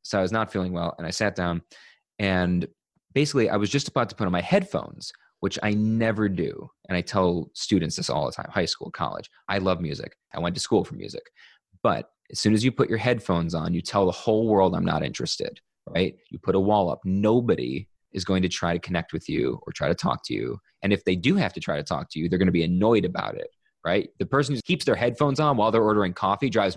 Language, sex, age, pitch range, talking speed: English, male, 30-49, 90-125 Hz, 255 wpm